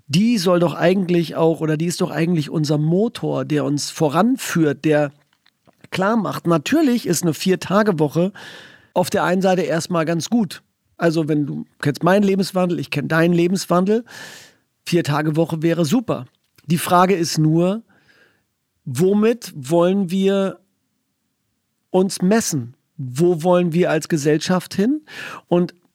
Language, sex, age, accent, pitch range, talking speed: German, male, 50-69, German, 155-195 Hz, 145 wpm